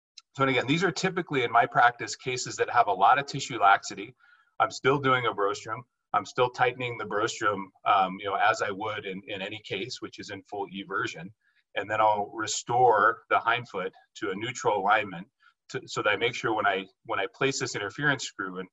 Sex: male